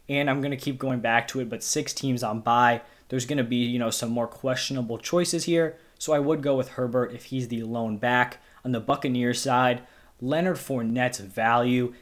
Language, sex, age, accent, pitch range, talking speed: English, male, 20-39, American, 120-140 Hz, 205 wpm